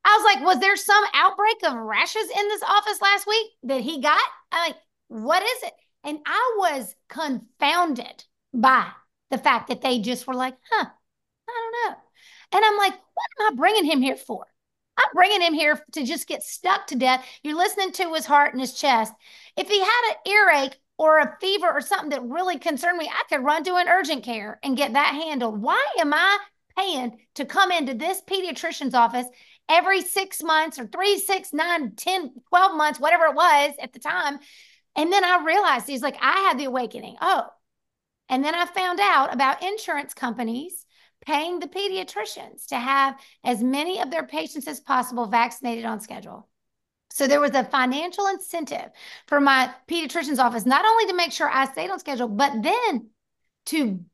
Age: 40-59